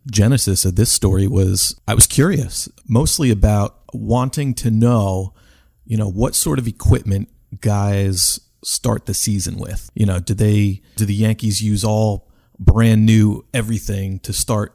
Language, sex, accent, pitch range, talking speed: English, male, American, 95-110 Hz, 155 wpm